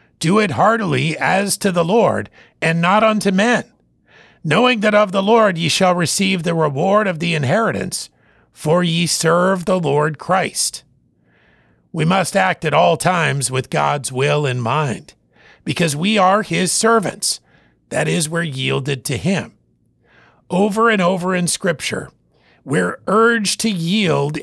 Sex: male